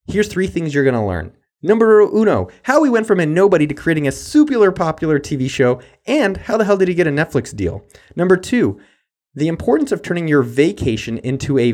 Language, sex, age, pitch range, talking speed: English, male, 20-39, 130-205 Hz, 215 wpm